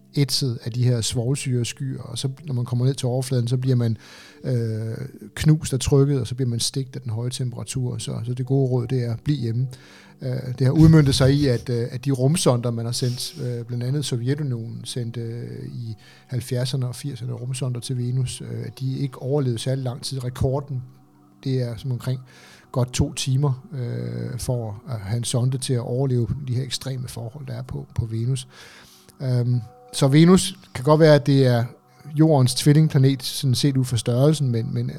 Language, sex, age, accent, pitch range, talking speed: Danish, male, 60-79, native, 120-135 Hz, 200 wpm